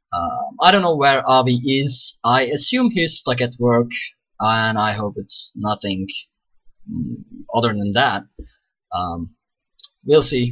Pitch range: 105-130 Hz